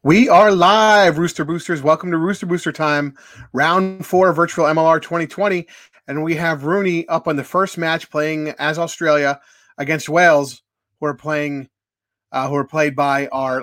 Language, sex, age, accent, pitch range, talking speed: English, male, 30-49, American, 130-160 Hz, 170 wpm